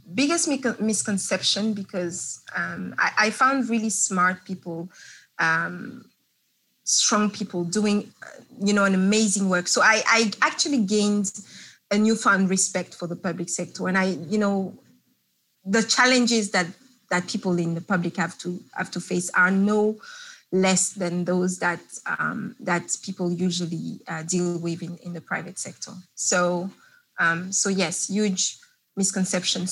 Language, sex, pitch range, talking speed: English, female, 180-220 Hz, 145 wpm